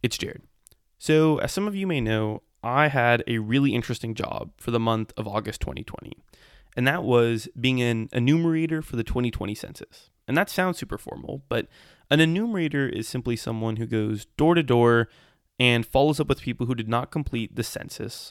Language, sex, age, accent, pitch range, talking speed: English, male, 20-39, American, 115-155 Hz, 190 wpm